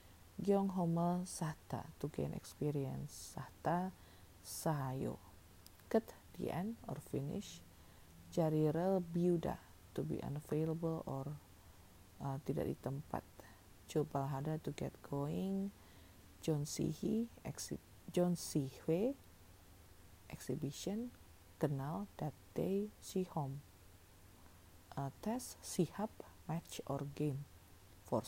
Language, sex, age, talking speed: Indonesian, female, 40-59, 80 wpm